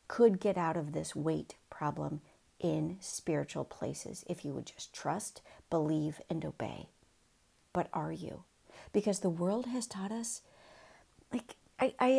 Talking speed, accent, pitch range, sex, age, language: 140 wpm, American, 175-235 Hz, female, 50-69, English